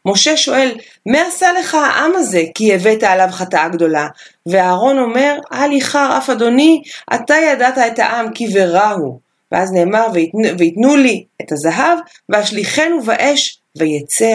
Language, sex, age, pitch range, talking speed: Hebrew, female, 30-49, 200-285 Hz, 145 wpm